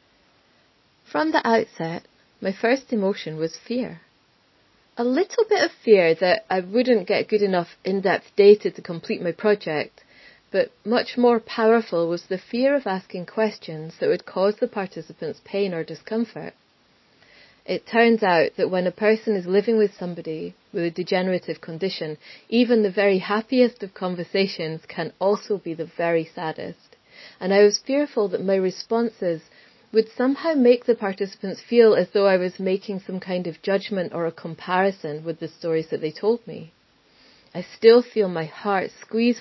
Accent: British